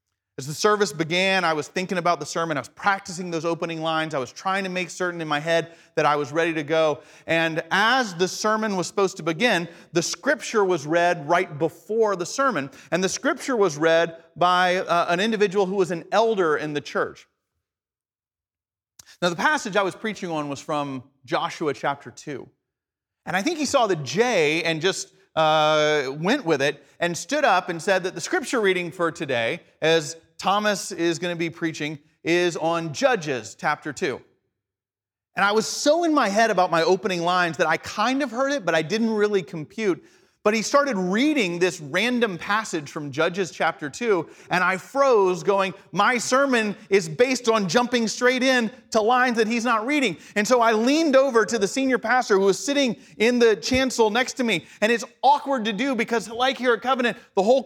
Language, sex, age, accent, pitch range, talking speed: English, male, 40-59, American, 165-235 Hz, 200 wpm